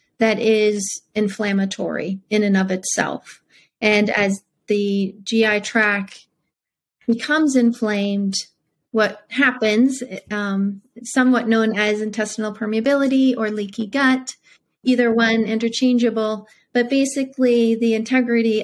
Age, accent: 30-49, American